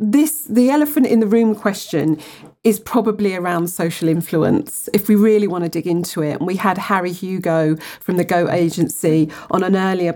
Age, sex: 40-59, female